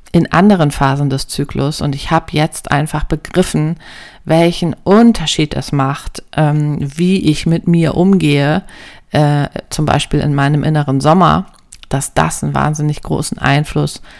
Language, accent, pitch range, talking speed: German, German, 135-165 Hz, 145 wpm